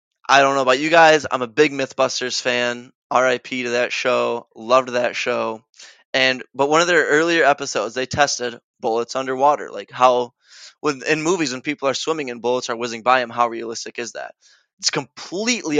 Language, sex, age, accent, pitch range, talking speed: English, male, 20-39, American, 120-145 Hz, 185 wpm